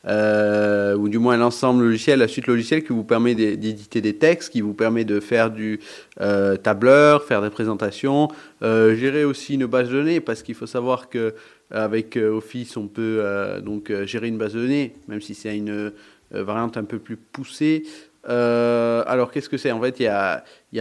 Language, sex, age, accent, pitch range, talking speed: French, male, 30-49, French, 110-145 Hz, 200 wpm